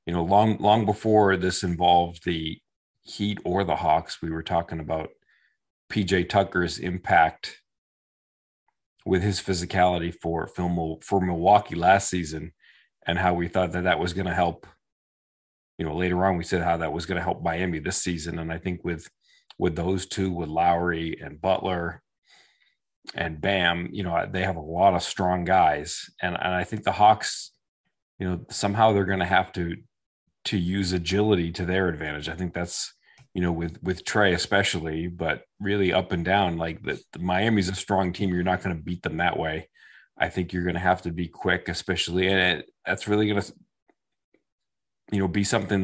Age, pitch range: 40-59, 85-95 Hz